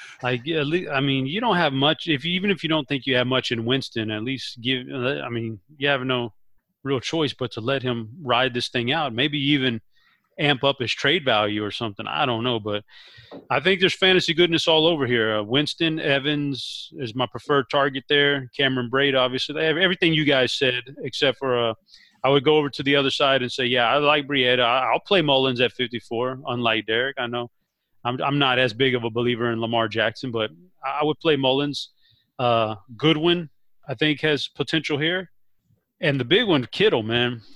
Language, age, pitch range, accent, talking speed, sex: English, 30-49, 120-150 Hz, American, 210 wpm, male